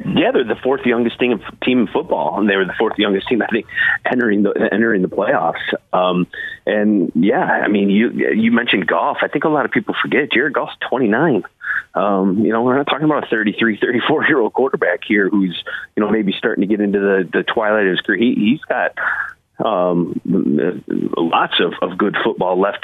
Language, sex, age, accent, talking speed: English, male, 30-49, American, 220 wpm